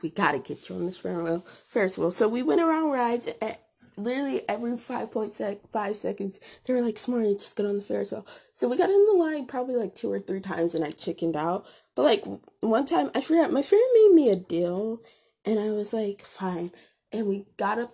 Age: 20-39